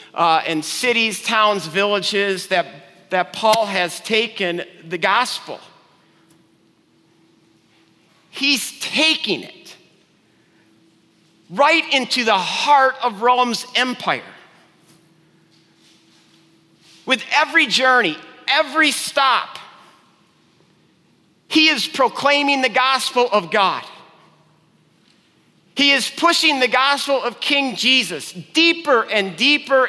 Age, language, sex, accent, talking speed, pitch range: 50-69, English, male, American, 90 wpm, 190-255 Hz